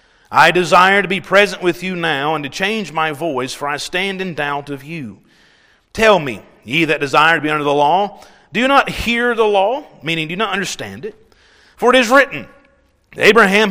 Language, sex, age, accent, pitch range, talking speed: English, male, 40-59, American, 155-210 Hz, 205 wpm